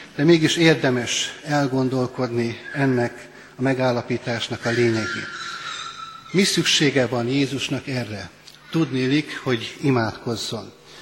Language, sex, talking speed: Hungarian, male, 95 wpm